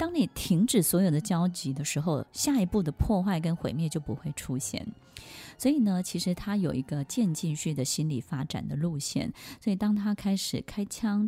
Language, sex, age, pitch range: Chinese, female, 20-39, 150-195 Hz